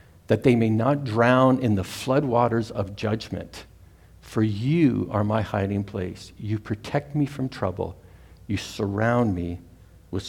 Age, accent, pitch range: 60-79, American, 95-125 Hz